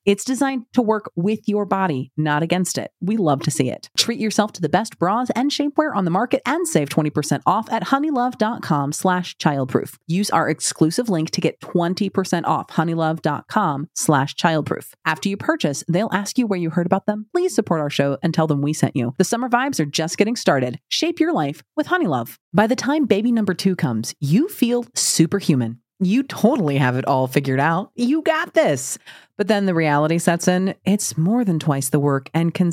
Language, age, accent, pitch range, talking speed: English, 30-49, American, 150-220 Hz, 200 wpm